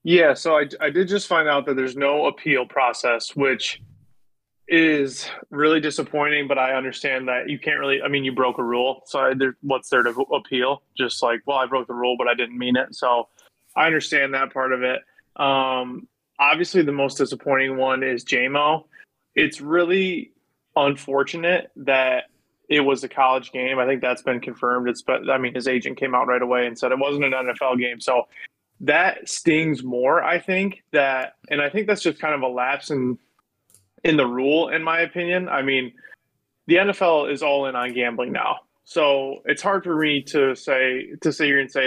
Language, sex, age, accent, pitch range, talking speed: English, male, 20-39, American, 130-150 Hz, 200 wpm